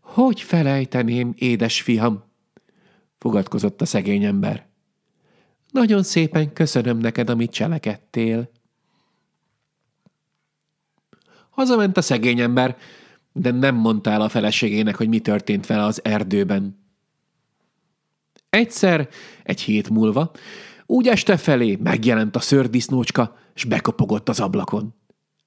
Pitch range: 120-205 Hz